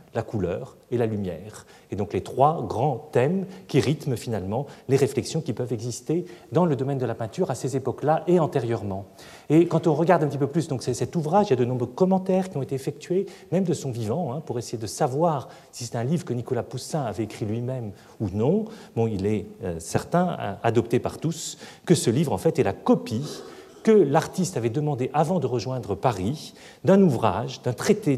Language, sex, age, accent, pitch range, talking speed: French, male, 40-59, French, 110-155 Hz, 210 wpm